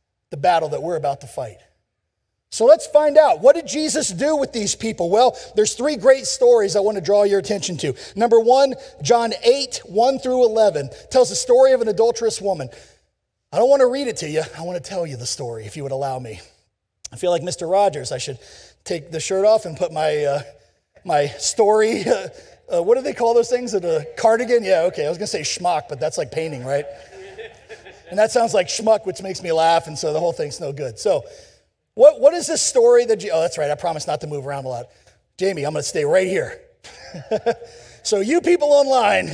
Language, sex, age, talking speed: English, male, 40-59, 225 wpm